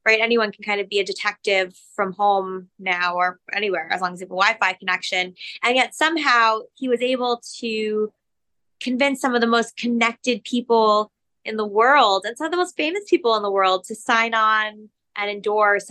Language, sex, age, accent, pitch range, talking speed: English, female, 20-39, American, 195-245 Hz, 200 wpm